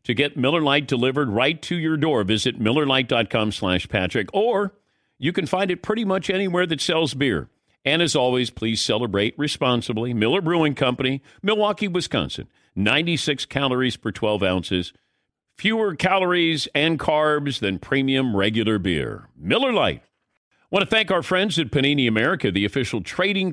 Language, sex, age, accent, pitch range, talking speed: English, male, 50-69, American, 115-155 Hz, 155 wpm